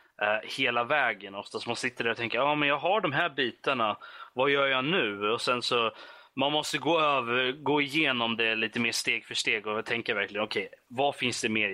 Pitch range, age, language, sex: 110-145 Hz, 30-49, Swedish, male